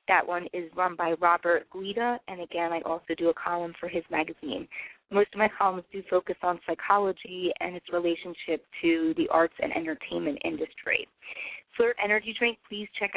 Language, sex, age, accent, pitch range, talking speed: English, female, 30-49, American, 175-215 Hz, 180 wpm